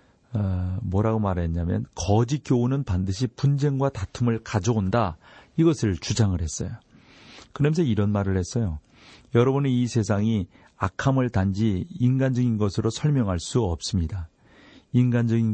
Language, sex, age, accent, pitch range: Korean, male, 40-59, native, 95-125 Hz